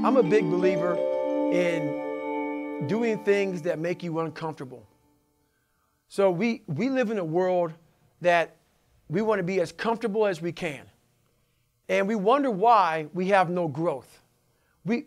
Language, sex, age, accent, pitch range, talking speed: English, male, 40-59, American, 175-230 Hz, 145 wpm